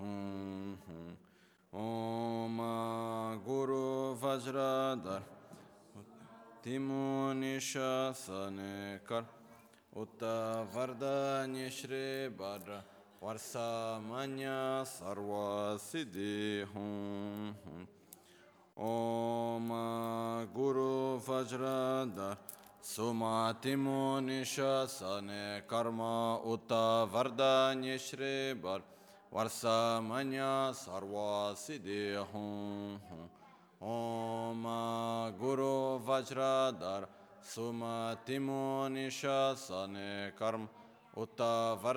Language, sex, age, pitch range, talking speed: Italian, male, 30-49, 105-130 Hz, 45 wpm